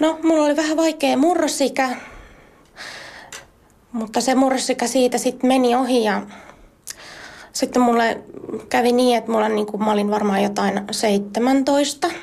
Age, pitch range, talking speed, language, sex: 20-39, 215-280 Hz, 130 wpm, Finnish, female